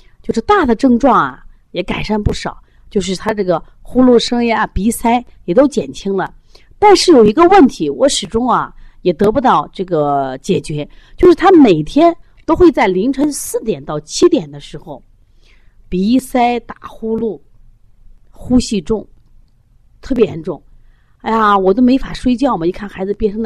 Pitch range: 160-260 Hz